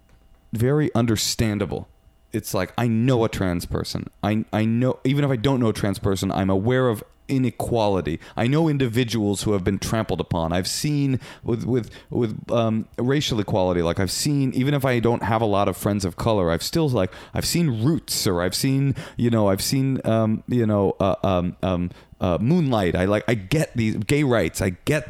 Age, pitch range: 30-49, 95-125 Hz